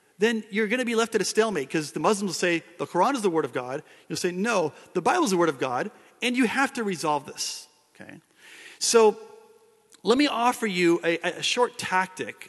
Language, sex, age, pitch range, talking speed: English, male, 40-59, 150-220 Hz, 225 wpm